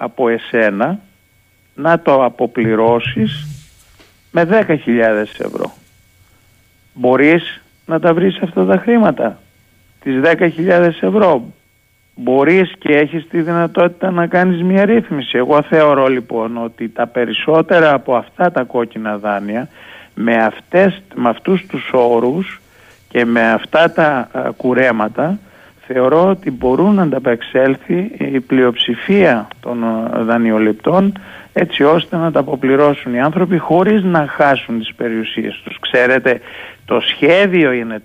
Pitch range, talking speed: 115-160 Hz, 120 wpm